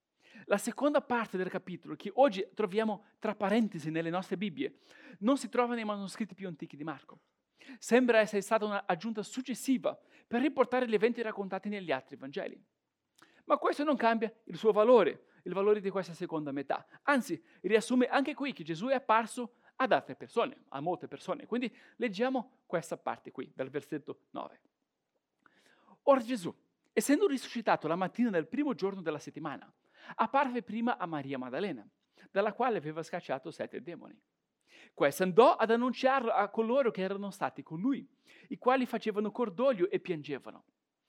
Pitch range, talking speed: 180-255 Hz, 160 wpm